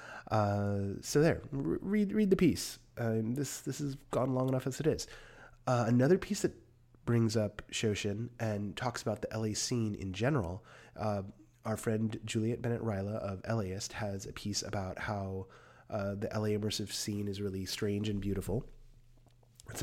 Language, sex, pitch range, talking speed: English, male, 95-125 Hz, 175 wpm